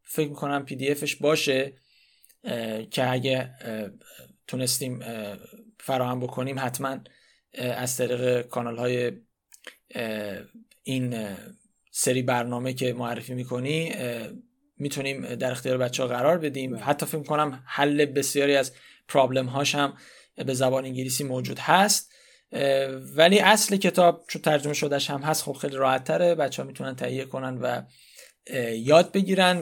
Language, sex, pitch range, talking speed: Persian, male, 130-170 Hz, 120 wpm